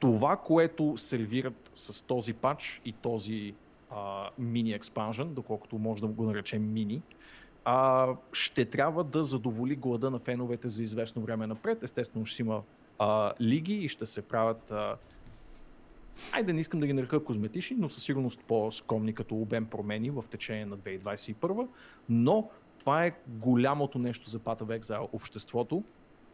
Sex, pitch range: male, 110-140 Hz